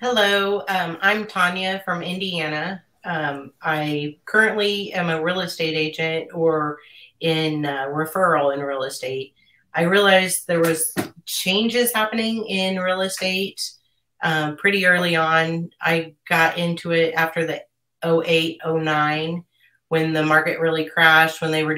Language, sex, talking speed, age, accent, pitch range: English, female, 140 wpm, 30-49, American, 155-175 Hz